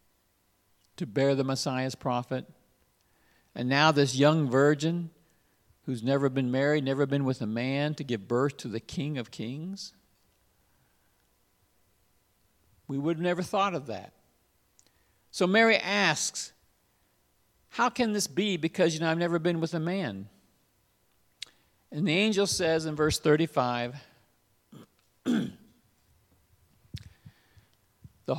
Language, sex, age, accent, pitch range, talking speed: English, male, 50-69, American, 115-160 Hz, 125 wpm